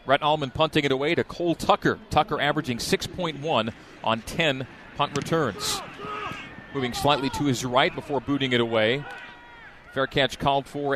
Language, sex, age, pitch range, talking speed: English, male, 40-59, 120-150 Hz, 155 wpm